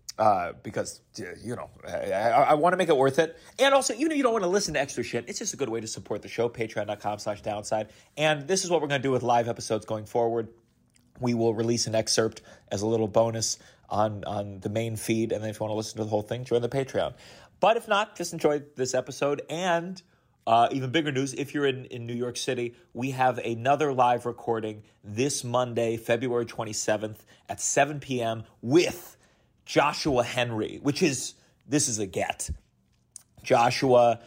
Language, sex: English, male